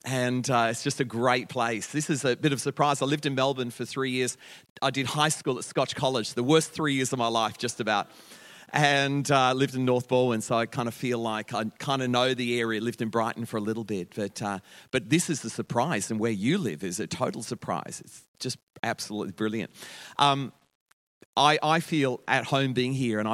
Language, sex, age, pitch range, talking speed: English, male, 40-59, 115-145 Hz, 235 wpm